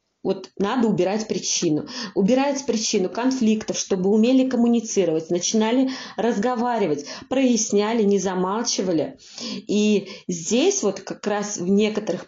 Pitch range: 185-230 Hz